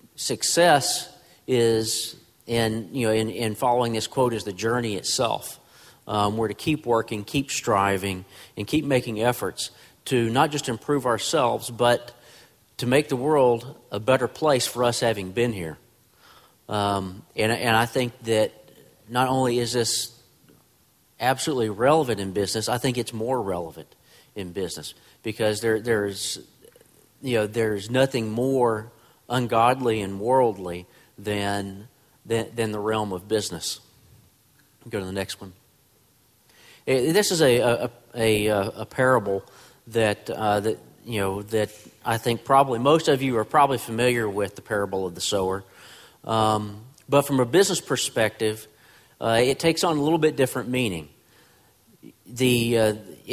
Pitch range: 105-125 Hz